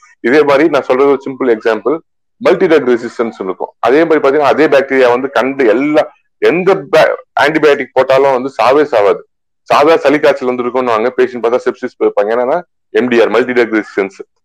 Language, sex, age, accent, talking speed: Tamil, male, 30-49, native, 130 wpm